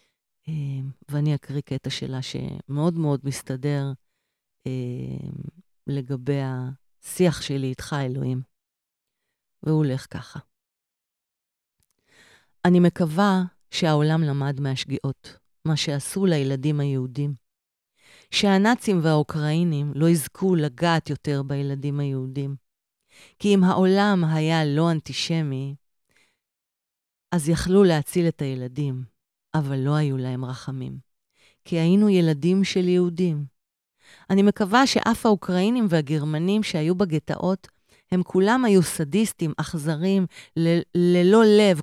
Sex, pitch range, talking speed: female, 140-180 Hz, 100 wpm